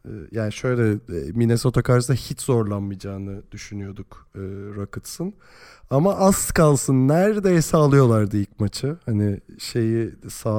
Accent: native